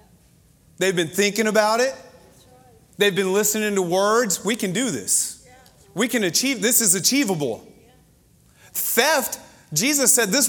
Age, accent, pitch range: 30-49, American, 225-280 Hz